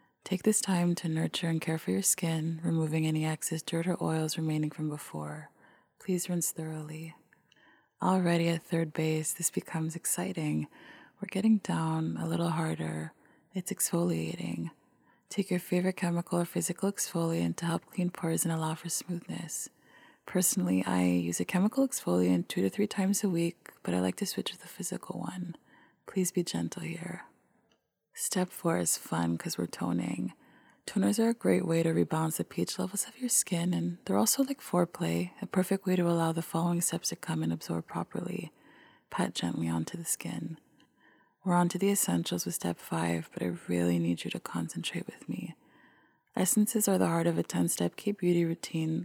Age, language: 20-39, English